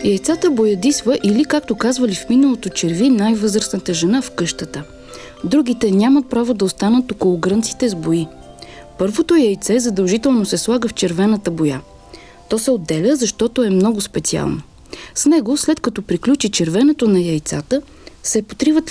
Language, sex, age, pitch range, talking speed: Bulgarian, female, 40-59, 180-260 Hz, 145 wpm